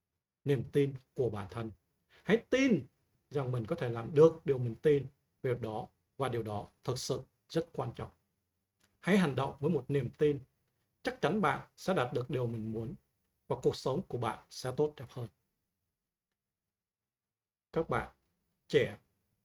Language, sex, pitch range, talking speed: Vietnamese, male, 120-160 Hz, 165 wpm